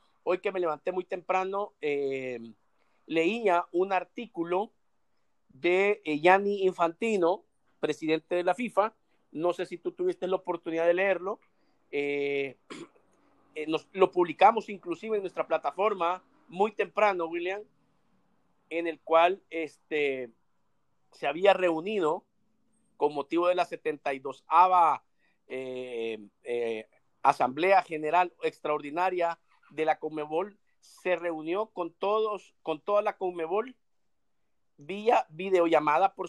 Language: Spanish